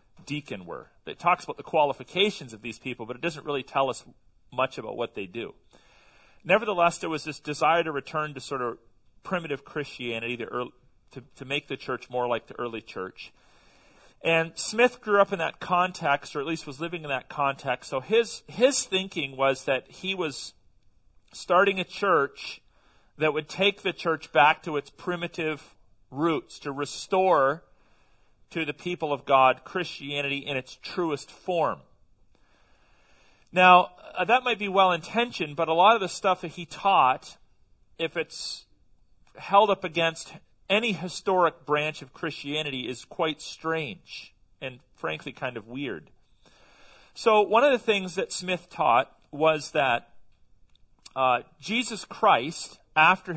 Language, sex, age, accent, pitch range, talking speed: English, male, 40-59, American, 130-180 Hz, 155 wpm